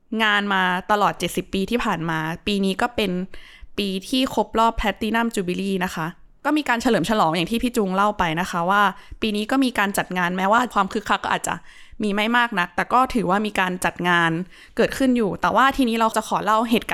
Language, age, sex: Thai, 20-39, female